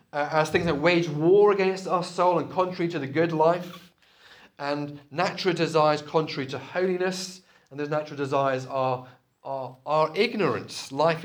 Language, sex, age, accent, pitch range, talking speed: English, male, 30-49, British, 145-190 Hz, 155 wpm